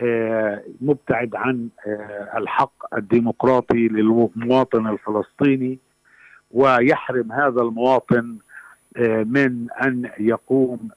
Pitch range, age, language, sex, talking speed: 115-135 Hz, 50-69, Arabic, male, 65 wpm